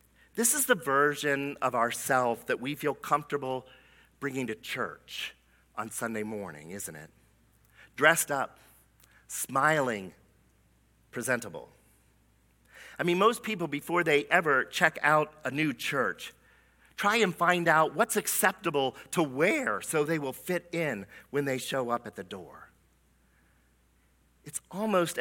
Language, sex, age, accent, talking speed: English, male, 50-69, American, 135 wpm